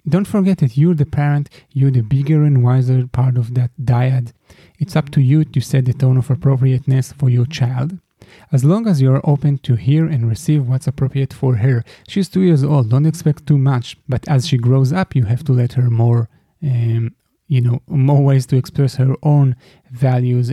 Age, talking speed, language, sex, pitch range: 30-49, 205 wpm, English, male, 125-145 Hz